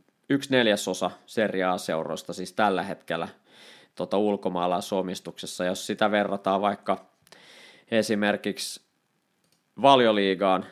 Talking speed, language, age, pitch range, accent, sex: 85 wpm, Finnish, 20-39, 90-105 Hz, native, male